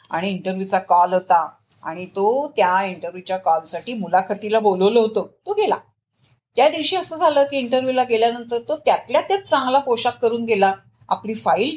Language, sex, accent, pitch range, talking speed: Marathi, female, native, 185-240 Hz, 95 wpm